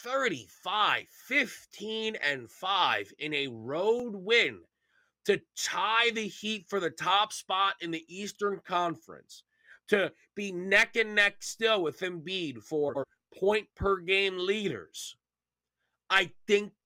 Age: 30-49